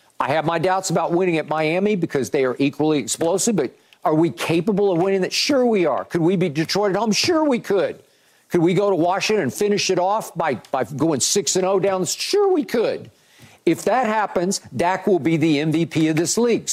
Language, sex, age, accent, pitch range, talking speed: English, male, 50-69, American, 155-195 Hz, 220 wpm